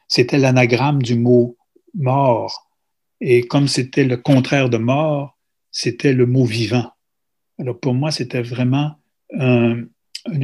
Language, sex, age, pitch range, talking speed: French, male, 60-79, 120-140 Hz, 130 wpm